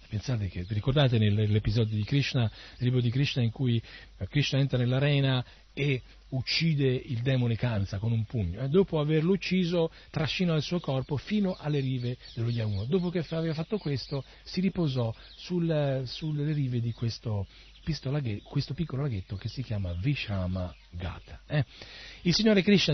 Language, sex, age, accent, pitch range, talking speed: Italian, male, 40-59, native, 110-155 Hz, 160 wpm